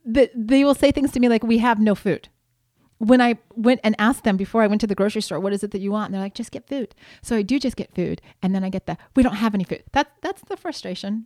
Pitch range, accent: 220-280 Hz, American